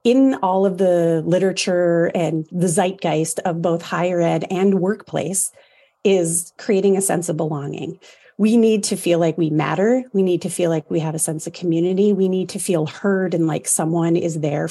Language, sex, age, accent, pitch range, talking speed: English, female, 30-49, American, 165-200 Hz, 195 wpm